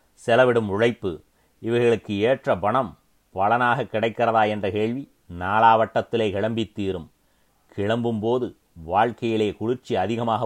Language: Tamil